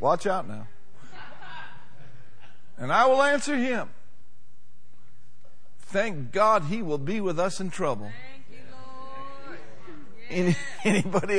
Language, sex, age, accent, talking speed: English, male, 50-69, American, 95 wpm